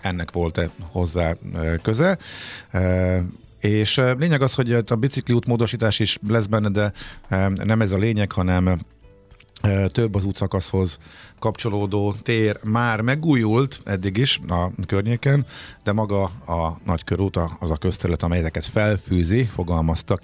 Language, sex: Hungarian, male